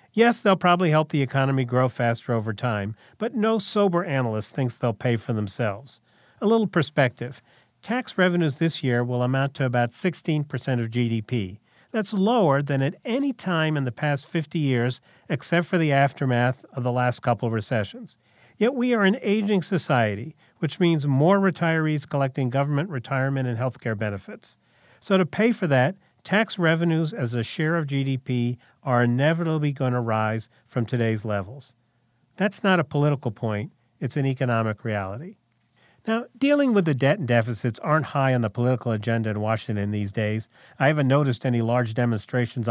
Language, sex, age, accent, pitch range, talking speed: English, male, 40-59, American, 120-170 Hz, 175 wpm